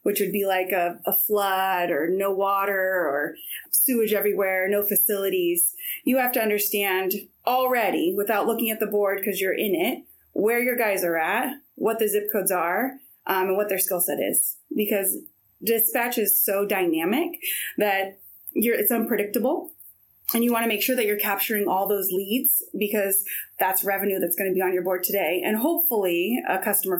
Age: 20-39